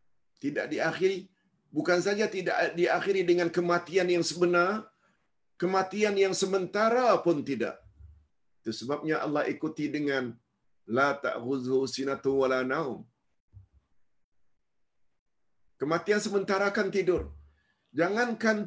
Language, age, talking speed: Malayalam, 50-69, 95 wpm